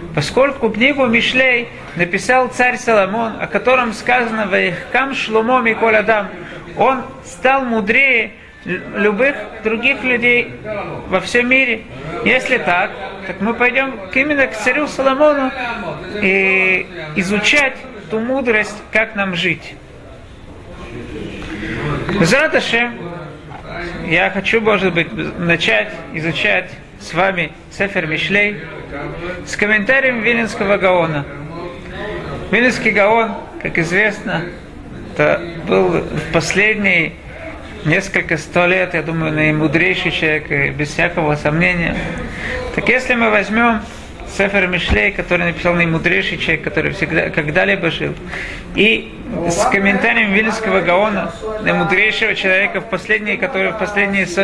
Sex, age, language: male, 40-59, Russian